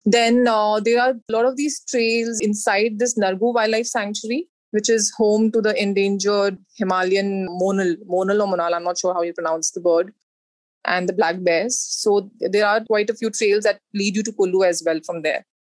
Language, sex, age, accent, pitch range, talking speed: English, female, 20-39, Indian, 190-225 Hz, 200 wpm